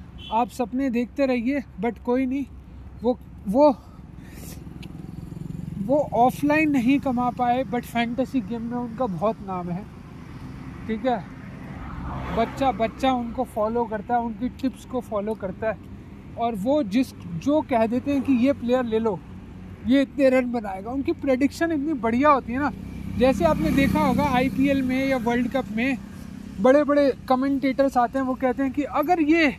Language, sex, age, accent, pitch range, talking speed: English, male, 20-39, Indian, 225-270 Hz, 130 wpm